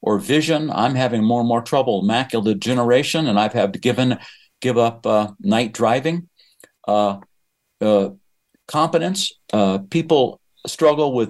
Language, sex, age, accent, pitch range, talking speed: English, male, 60-79, American, 115-150 Hz, 150 wpm